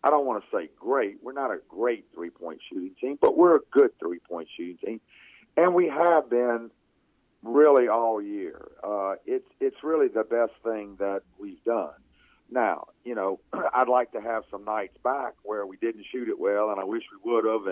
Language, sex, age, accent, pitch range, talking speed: English, male, 50-69, American, 100-145 Hz, 200 wpm